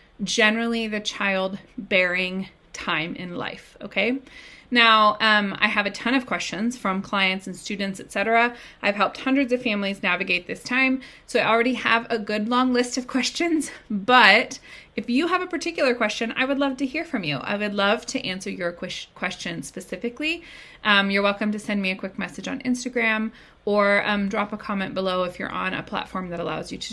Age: 30-49